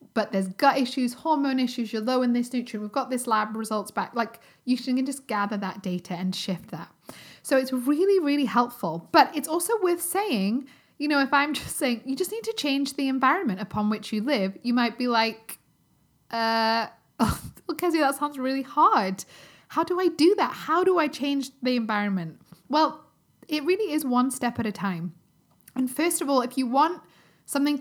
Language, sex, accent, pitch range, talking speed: English, female, British, 210-280 Hz, 200 wpm